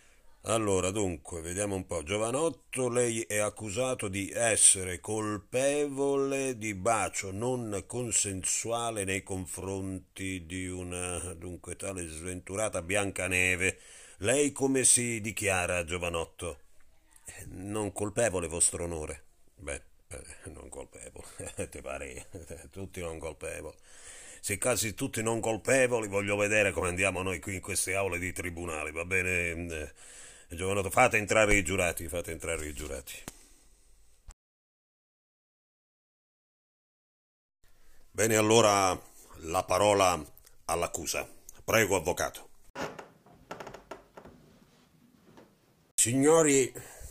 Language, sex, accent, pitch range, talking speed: Italian, male, native, 90-115 Hz, 95 wpm